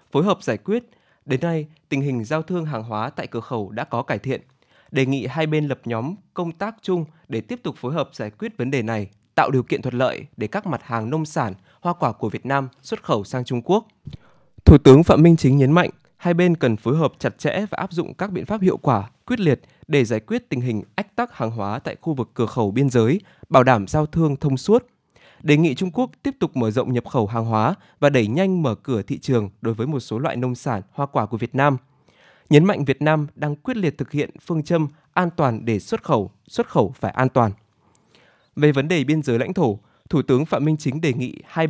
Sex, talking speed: male, 250 wpm